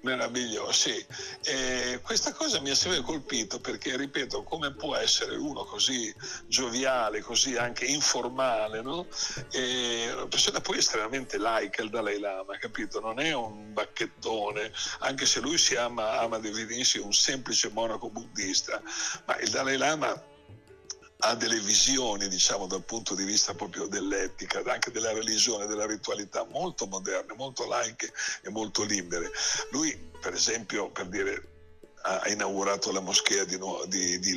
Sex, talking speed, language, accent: male, 150 wpm, Italian, native